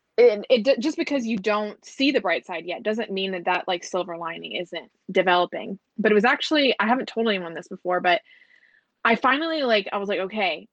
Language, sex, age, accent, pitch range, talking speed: English, female, 20-39, American, 185-230 Hz, 215 wpm